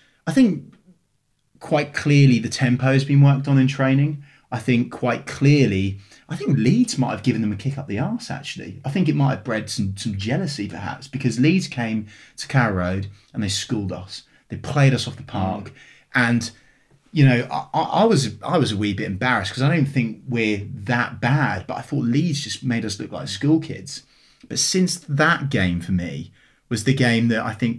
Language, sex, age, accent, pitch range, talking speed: English, male, 30-49, British, 105-140 Hz, 205 wpm